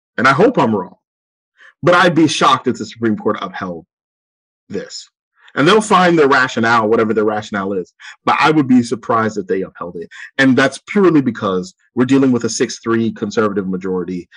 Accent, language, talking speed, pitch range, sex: American, English, 185 wpm, 95-120 Hz, male